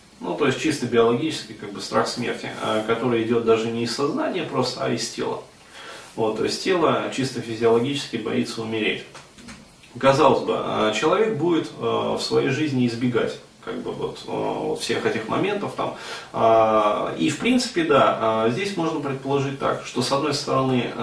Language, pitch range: Russian, 110-135 Hz